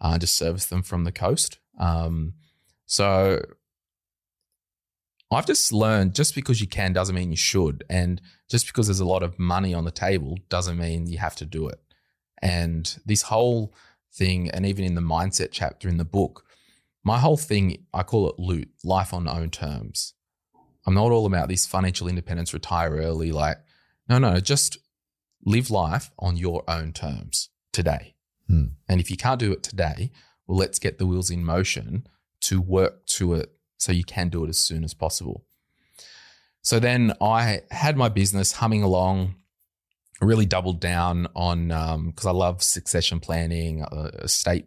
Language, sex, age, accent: English, male, 20-39, Australian